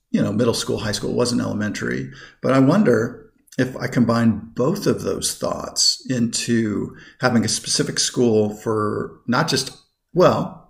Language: English